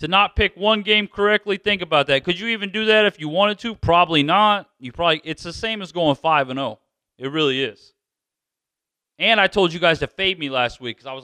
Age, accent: 40-59, American